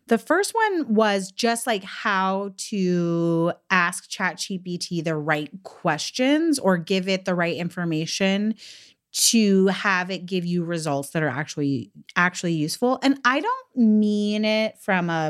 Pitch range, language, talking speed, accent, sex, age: 170-225 Hz, English, 145 wpm, American, female, 30-49